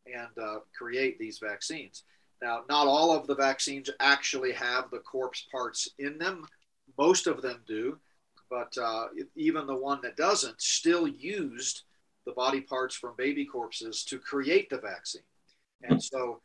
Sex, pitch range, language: male, 125-155 Hz, English